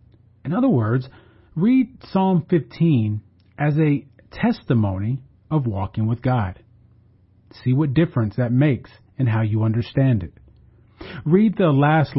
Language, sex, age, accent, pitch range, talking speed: English, male, 40-59, American, 110-150 Hz, 130 wpm